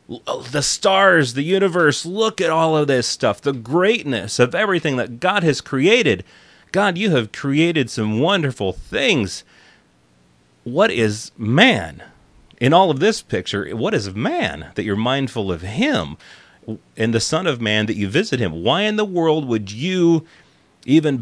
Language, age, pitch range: English, 30-49, 95-140 Hz